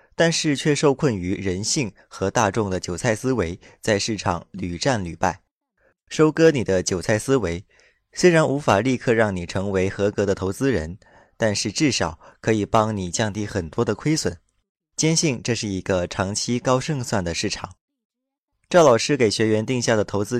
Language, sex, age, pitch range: Chinese, male, 20-39, 95-130 Hz